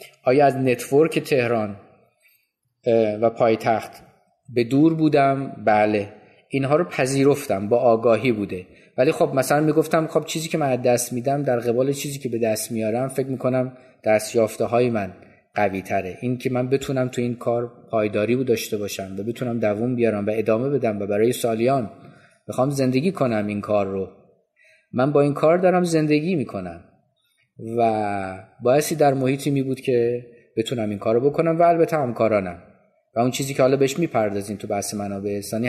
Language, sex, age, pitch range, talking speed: Persian, male, 30-49, 115-140 Hz, 175 wpm